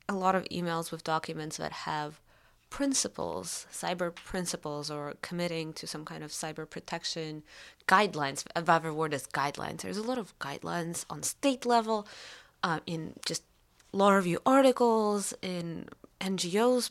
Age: 20-39